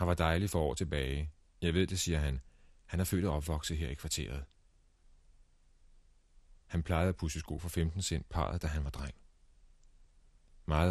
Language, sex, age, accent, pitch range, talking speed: Danish, male, 40-59, native, 75-90 Hz, 180 wpm